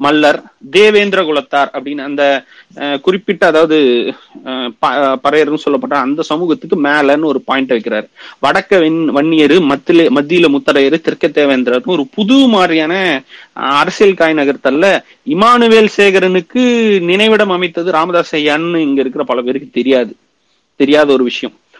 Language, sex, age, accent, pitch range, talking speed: Tamil, male, 30-49, native, 140-190 Hz, 115 wpm